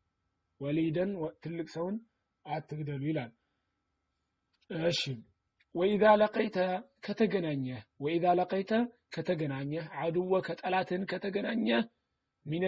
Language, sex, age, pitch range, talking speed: Amharic, male, 30-49, 140-190 Hz, 80 wpm